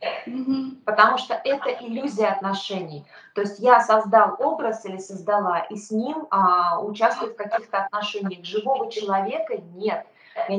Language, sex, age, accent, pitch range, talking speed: Russian, female, 20-39, native, 190-240 Hz, 135 wpm